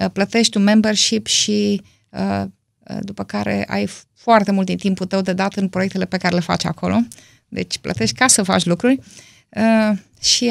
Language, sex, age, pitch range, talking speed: Romanian, female, 20-39, 180-225 Hz, 165 wpm